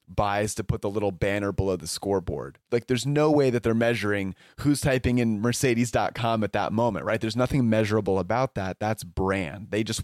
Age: 30-49